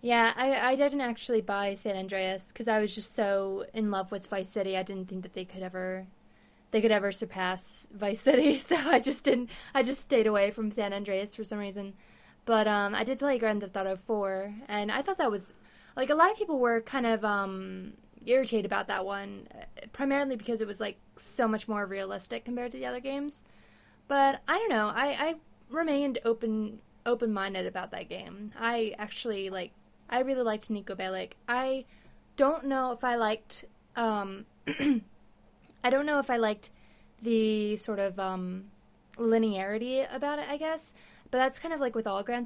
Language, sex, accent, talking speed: English, female, American, 195 wpm